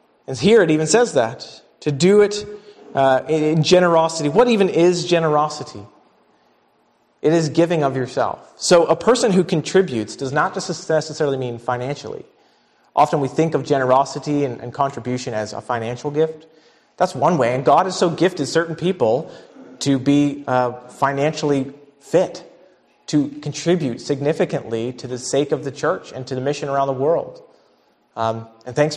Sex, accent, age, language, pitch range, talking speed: male, American, 30-49, English, 130-160 Hz, 160 wpm